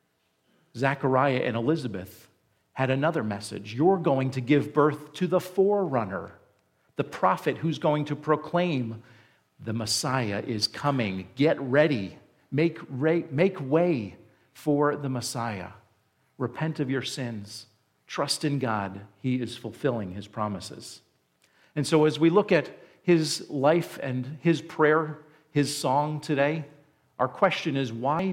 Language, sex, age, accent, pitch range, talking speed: English, male, 50-69, American, 115-150 Hz, 130 wpm